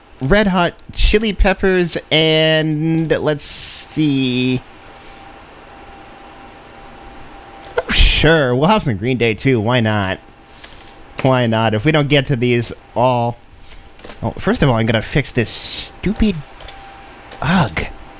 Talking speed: 120 wpm